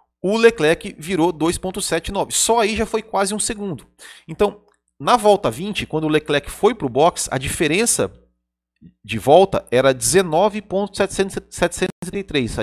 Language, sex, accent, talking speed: Portuguese, male, Brazilian, 135 wpm